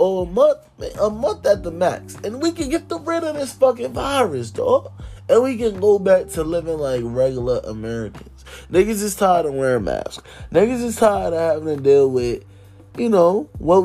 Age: 20-39